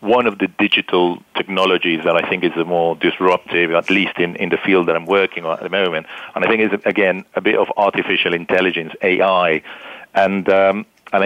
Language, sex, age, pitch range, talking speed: English, male, 50-69, 85-105 Hz, 210 wpm